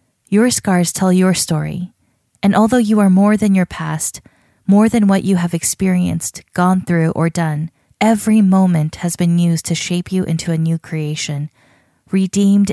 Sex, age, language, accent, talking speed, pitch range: female, 20-39, English, American, 170 wpm, 160-195 Hz